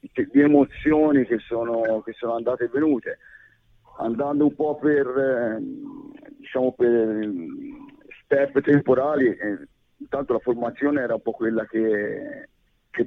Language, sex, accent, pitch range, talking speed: Italian, male, native, 110-155 Hz, 130 wpm